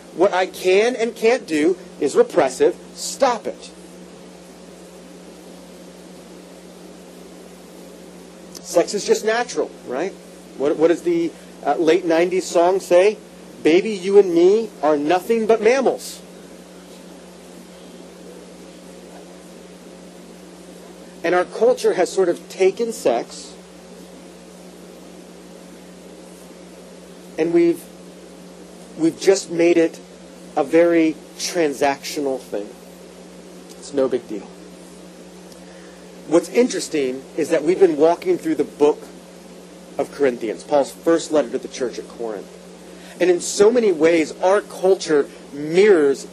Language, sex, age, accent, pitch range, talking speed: English, male, 40-59, American, 155-240 Hz, 105 wpm